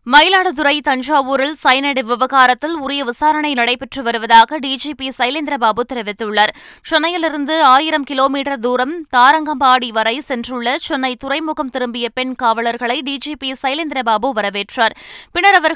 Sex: female